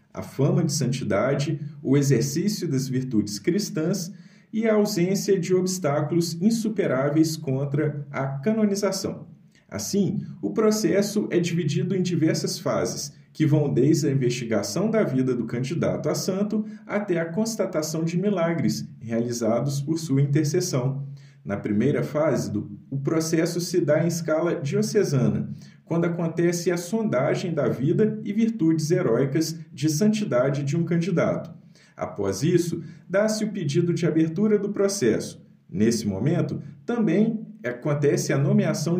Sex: male